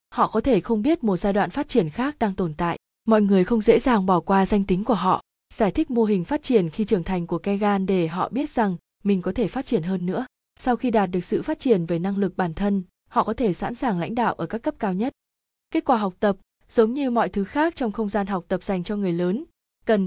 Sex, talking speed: female, 270 wpm